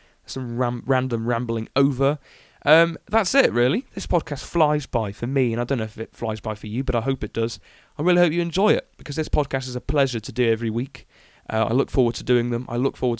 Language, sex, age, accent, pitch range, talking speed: English, male, 20-39, British, 120-150 Hz, 250 wpm